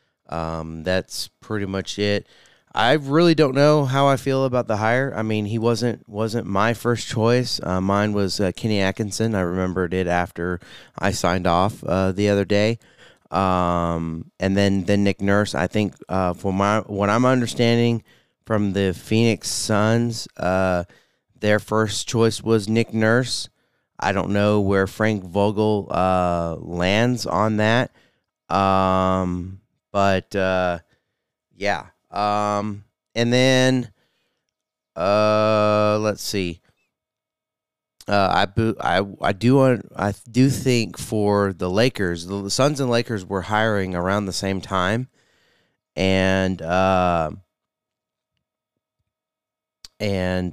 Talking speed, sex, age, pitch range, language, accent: 130 wpm, male, 30-49, 95-115 Hz, English, American